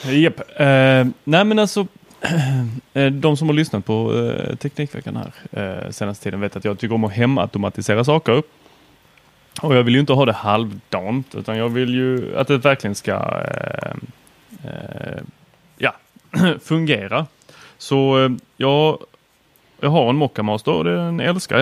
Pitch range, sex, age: 110-150 Hz, male, 30-49